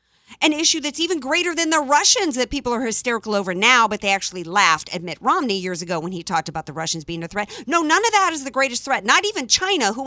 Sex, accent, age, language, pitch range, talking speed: female, American, 50-69, English, 200-325 Hz, 260 wpm